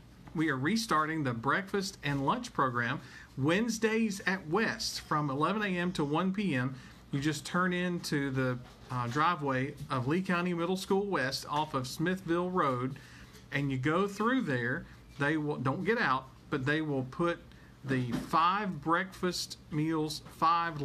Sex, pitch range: male, 135-180 Hz